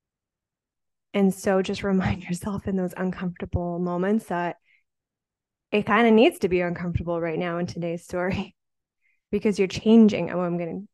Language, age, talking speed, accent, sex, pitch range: English, 20-39, 155 wpm, American, female, 185-235 Hz